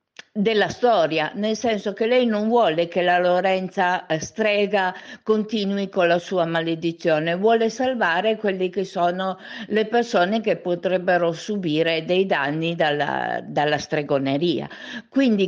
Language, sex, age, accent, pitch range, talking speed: Italian, female, 50-69, native, 175-230 Hz, 130 wpm